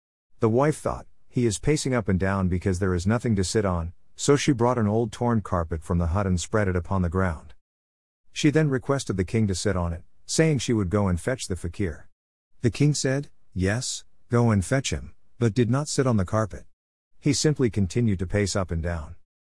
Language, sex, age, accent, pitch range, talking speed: English, male, 50-69, American, 85-120 Hz, 220 wpm